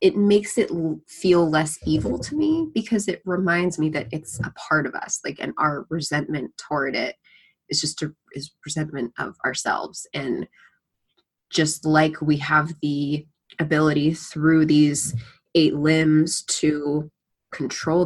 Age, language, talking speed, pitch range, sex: 20-39, English, 145 wpm, 155-200 Hz, female